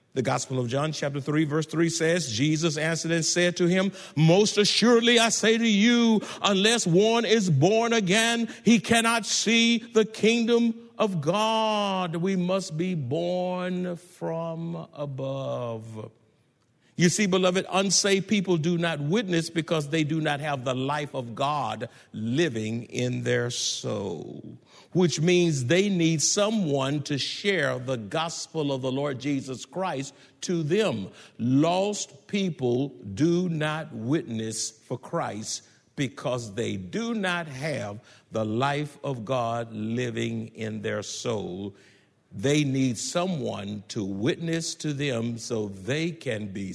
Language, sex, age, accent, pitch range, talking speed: English, male, 60-79, American, 130-200 Hz, 135 wpm